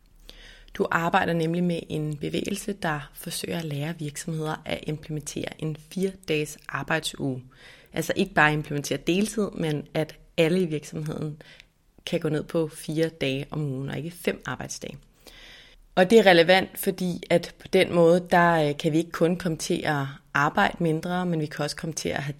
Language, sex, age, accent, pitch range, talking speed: Danish, female, 30-49, native, 150-180 Hz, 170 wpm